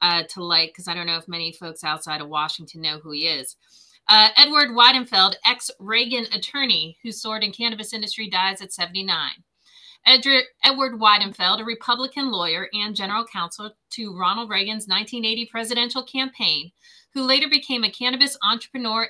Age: 40-59